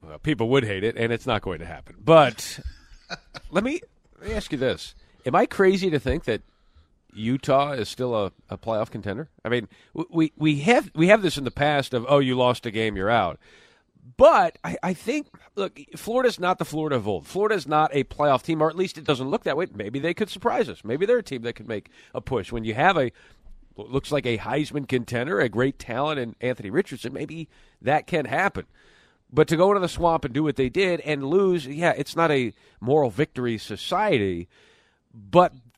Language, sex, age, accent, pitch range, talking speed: English, male, 40-59, American, 115-160 Hz, 220 wpm